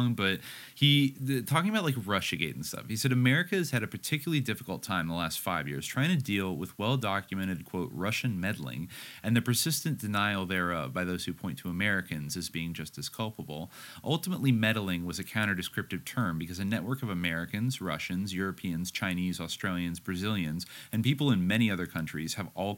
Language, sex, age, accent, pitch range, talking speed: English, male, 30-49, American, 90-125 Hz, 185 wpm